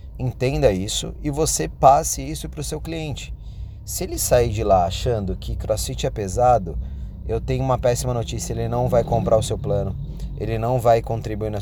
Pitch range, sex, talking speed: 95-125 Hz, male, 190 wpm